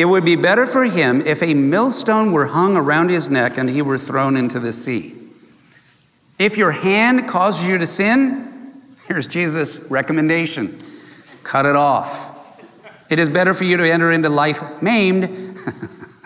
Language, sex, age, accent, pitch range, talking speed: English, male, 50-69, American, 145-215 Hz, 160 wpm